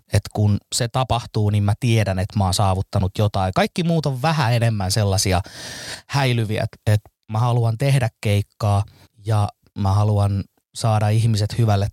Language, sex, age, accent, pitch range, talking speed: Finnish, male, 20-39, native, 105-130 Hz, 155 wpm